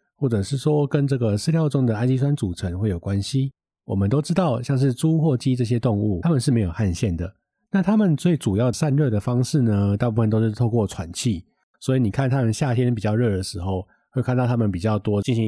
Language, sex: Chinese, male